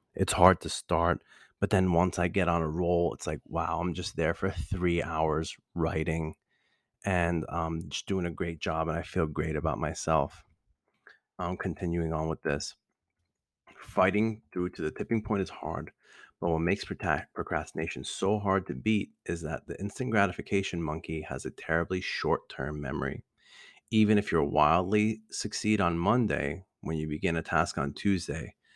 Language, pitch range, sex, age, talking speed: English, 80-95 Hz, male, 30-49, 170 wpm